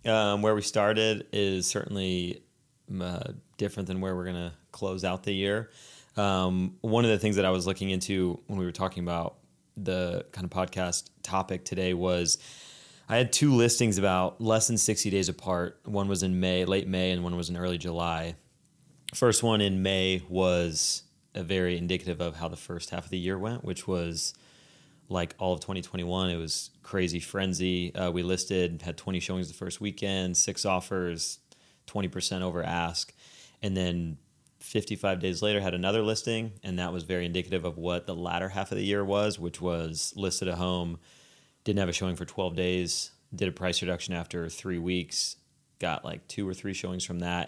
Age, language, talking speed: 30-49, English, 190 wpm